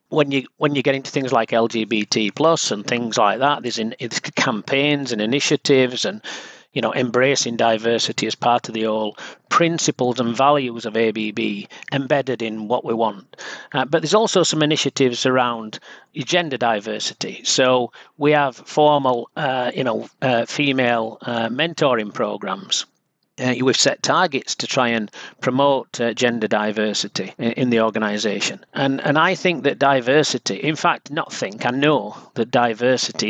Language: English